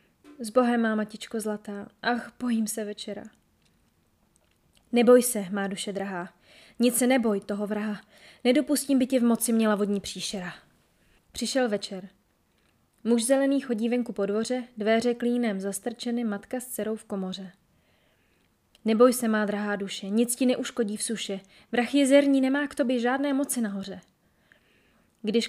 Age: 20-39